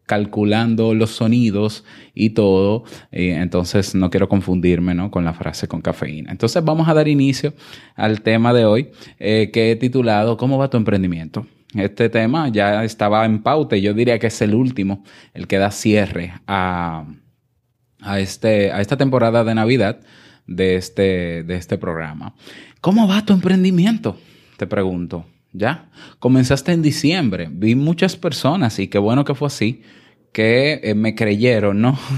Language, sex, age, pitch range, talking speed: Spanish, male, 20-39, 100-125 Hz, 155 wpm